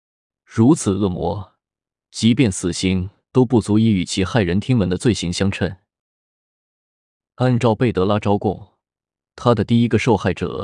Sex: male